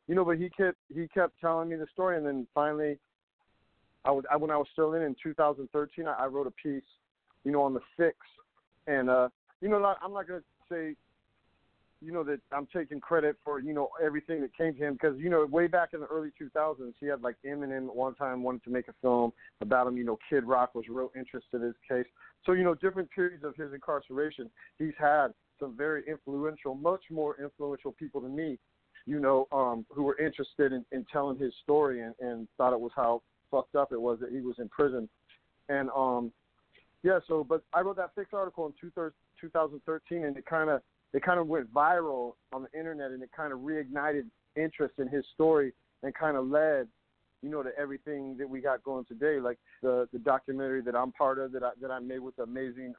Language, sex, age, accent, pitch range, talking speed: English, male, 40-59, American, 130-155 Hz, 225 wpm